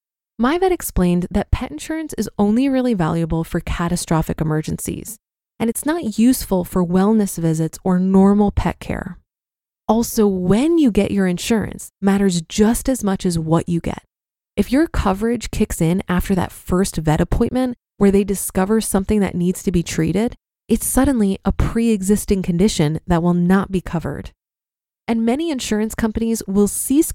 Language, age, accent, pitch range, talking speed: English, 20-39, American, 175-230 Hz, 160 wpm